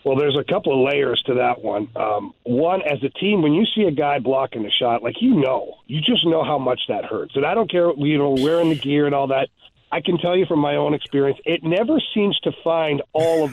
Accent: American